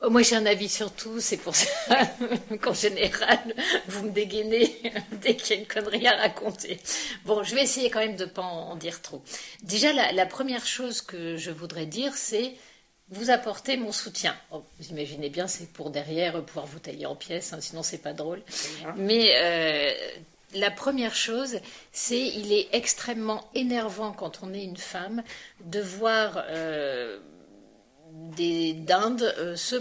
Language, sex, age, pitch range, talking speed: French, female, 50-69, 190-240 Hz, 175 wpm